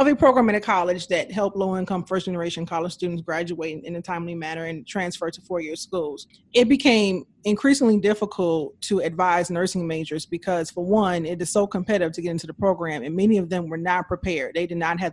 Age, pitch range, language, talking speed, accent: 30-49, 180-215 Hz, English, 210 wpm, American